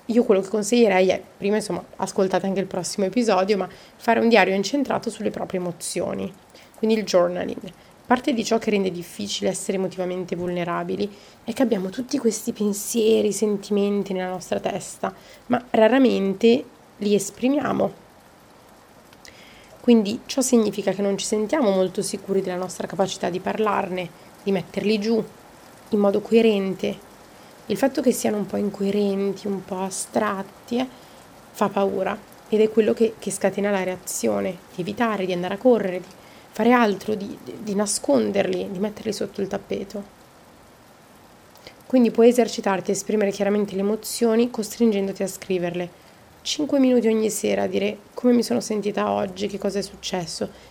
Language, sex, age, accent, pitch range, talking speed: Italian, female, 20-39, native, 190-225 Hz, 155 wpm